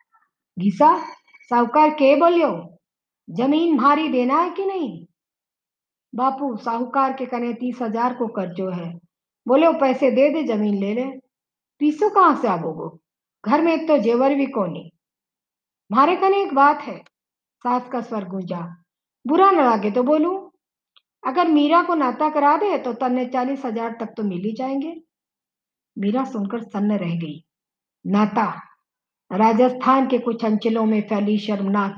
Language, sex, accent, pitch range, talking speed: Hindi, female, native, 205-280 Hz, 145 wpm